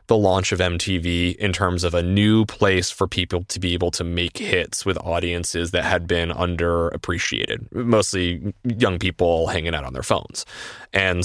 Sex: male